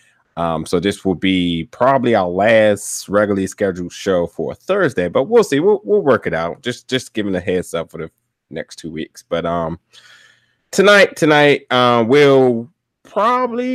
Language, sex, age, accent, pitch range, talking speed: English, male, 20-39, American, 95-125 Hz, 170 wpm